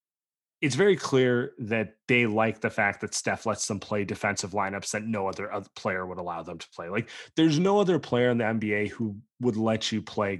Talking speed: 220 wpm